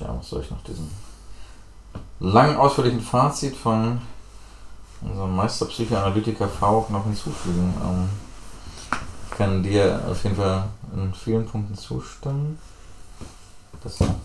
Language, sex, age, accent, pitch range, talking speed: German, male, 30-49, German, 90-110 Hz, 110 wpm